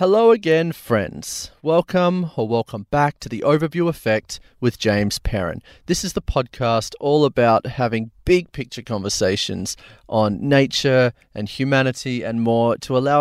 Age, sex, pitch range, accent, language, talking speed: 30-49, male, 110-135 Hz, Australian, English, 145 wpm